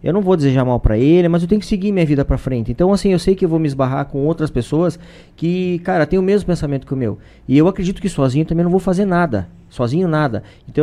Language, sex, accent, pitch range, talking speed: Portuguese, male, Brazilian, 130-170 Hz, 275 wpm